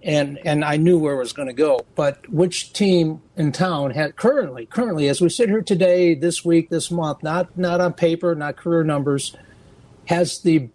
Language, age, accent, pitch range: English, 60-79, American, 140-175 Hz